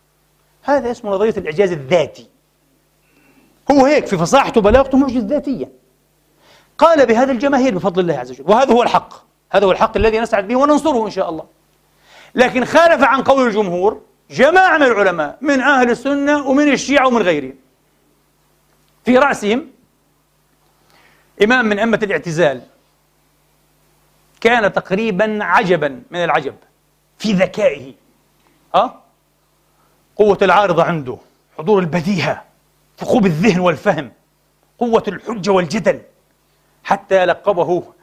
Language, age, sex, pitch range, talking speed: Arabic, 40-59, male, 170-245 Hz, 115 wpm